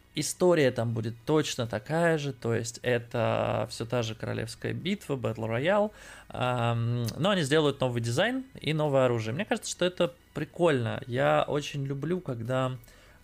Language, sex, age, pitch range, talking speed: Russian, male, 20-39, 115-140 Hz, 150 wpm